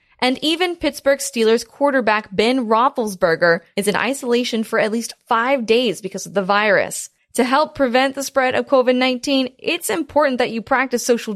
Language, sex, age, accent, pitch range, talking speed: English, female, 20-39, American, 205-265 Hz, 170 wpm